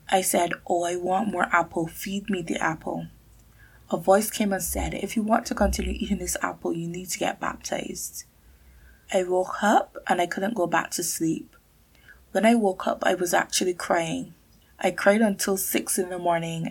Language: English